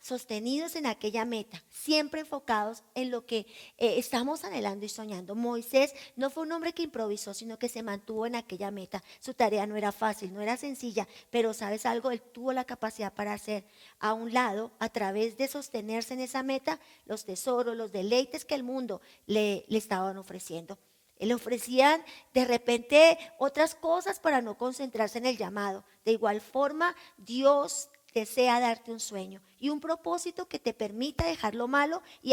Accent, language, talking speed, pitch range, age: American, Spanish, 180 wpm, 210-275 Hz, 40-59